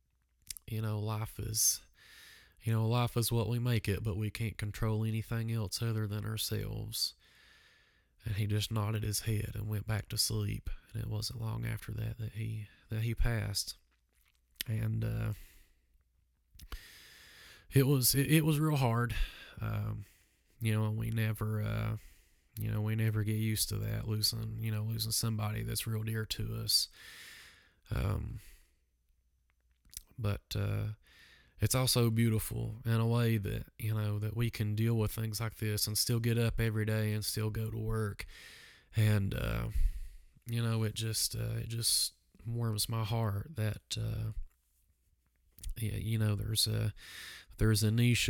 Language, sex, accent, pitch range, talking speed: English, male, American, 105-115 Hz, 160 wpm